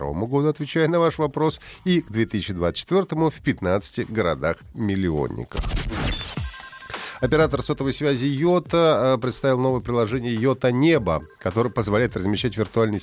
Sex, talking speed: male, 110 wpm